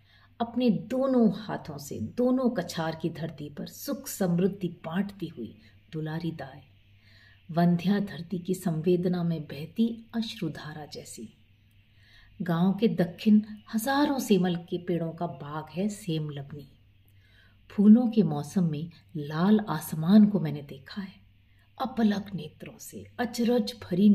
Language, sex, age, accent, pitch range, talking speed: Hindi, female, 50-69, native, 135-210 Hz, 120 wpm